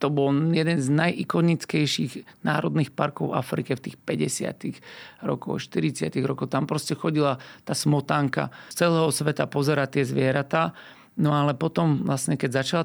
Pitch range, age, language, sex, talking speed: 140-160 Hz, 40-59, Slovak, male, 145 wpm